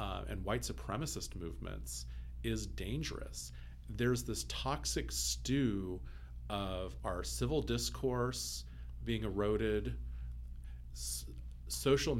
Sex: male